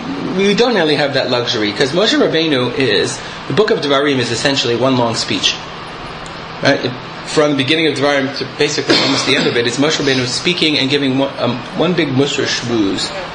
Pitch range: 125-150 Hz